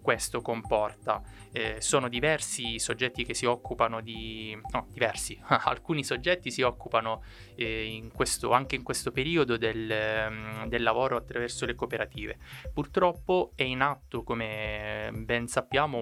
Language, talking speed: Italian, 130 wpm